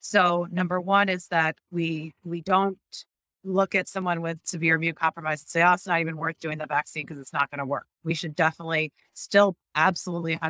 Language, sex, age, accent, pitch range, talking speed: English, female, 30-49, American, 150-175 Hz, 200 wpm